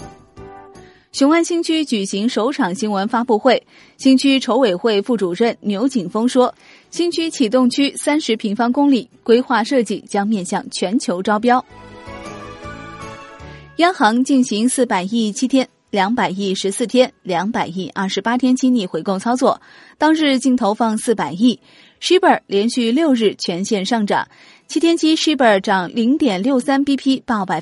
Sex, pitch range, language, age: female, 195-255 Hz, Chinese, 20-39